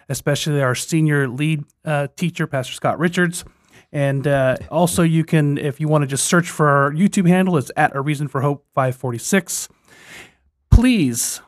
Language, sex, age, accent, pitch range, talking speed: English, male, 30-49, American, 135-170 Hz, 180 wpm